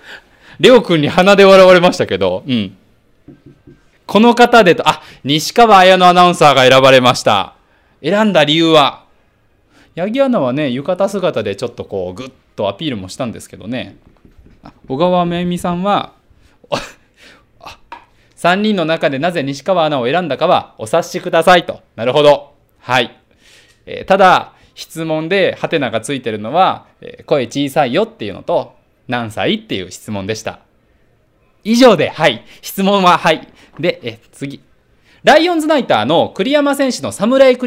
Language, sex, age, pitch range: Japanese, male, 20-39, 130-200 Hz